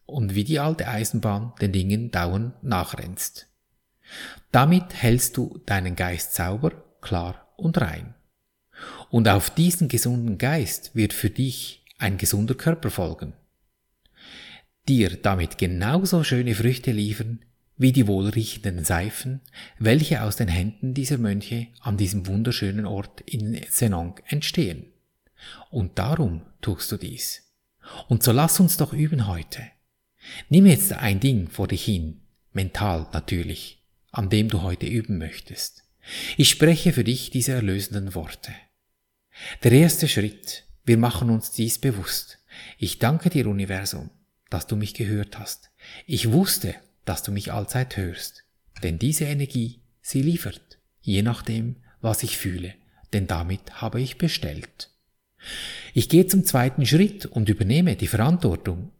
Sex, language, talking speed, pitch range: male, German, 135 wpm, 100-130 Hz